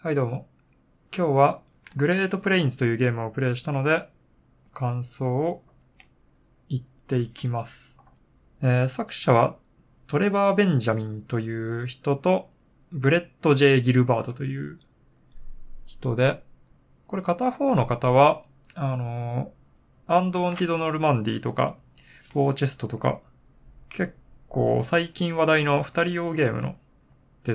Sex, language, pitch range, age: male, Japanese, 120-155 Hz, 20-39